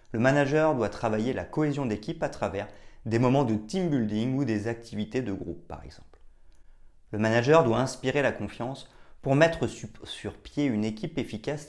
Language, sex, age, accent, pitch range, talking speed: French, male, 30-49, French, 95-140 Hz, 175 wpm